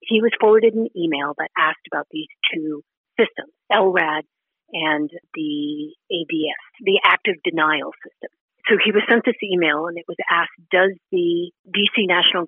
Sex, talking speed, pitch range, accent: female, 160 wpm, 170-245 Hz, American